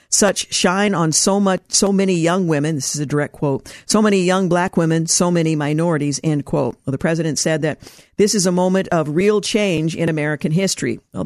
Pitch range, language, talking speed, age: 155-190 Hz, English, 215 wpm, 50-69